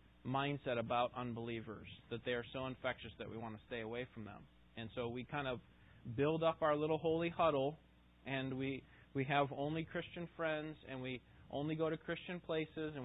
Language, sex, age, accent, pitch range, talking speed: English, male, 20-39, American, 115-145 Hz, 195 wpm